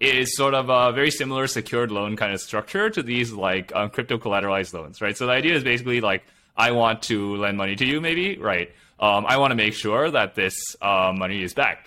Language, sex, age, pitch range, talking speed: English, male, 20-39, 100-150 Hz, 230 wpm